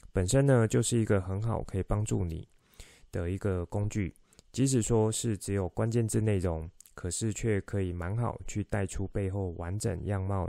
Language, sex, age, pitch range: Chinese, male, 20-39, 95-110 Hz